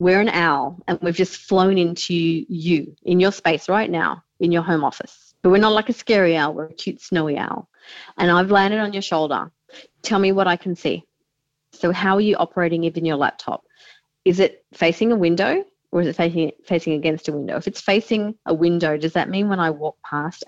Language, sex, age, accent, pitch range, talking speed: English, female, 30-49, Australian, 160-195 Hz, 220 wpm